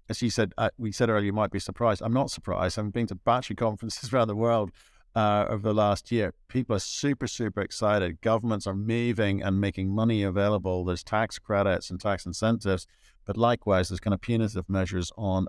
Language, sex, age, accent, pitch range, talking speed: English, male, 50-69, British, 100-120 Hz, 205 wpm